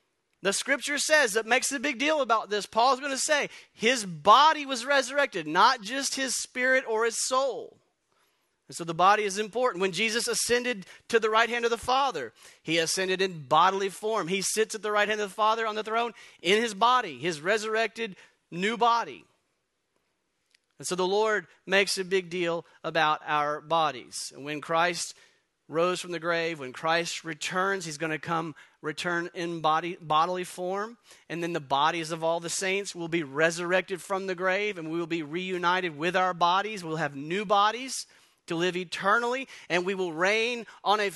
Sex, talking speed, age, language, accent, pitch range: male, 185 wpm, 40-59, English, American, 170-235 Hz